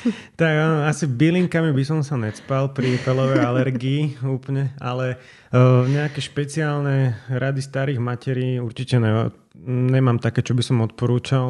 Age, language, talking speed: 30-49, Slovak, 125 wpm